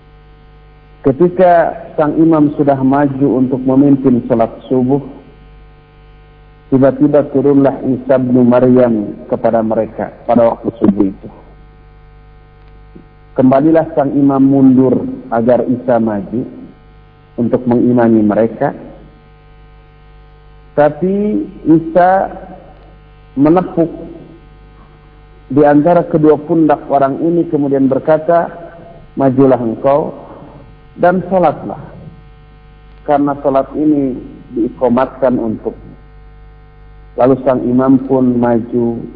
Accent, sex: native, male